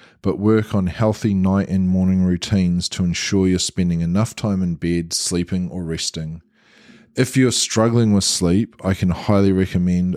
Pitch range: 85-100 Hz